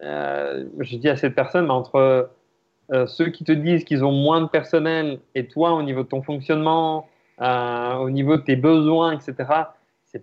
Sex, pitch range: male, 125-160 Hz